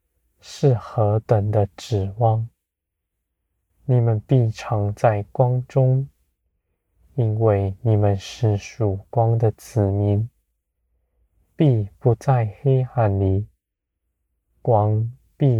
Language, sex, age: Chinese, male, 20-39